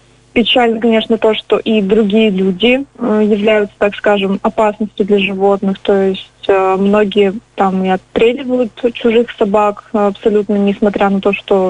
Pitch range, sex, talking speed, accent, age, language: 200-230 Hz, female, 135 wpm, native, 20-39, Russian